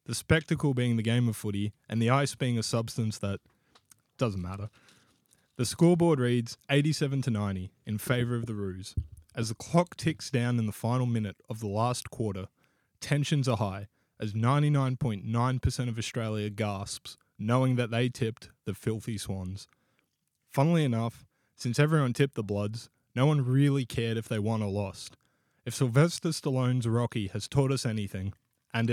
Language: English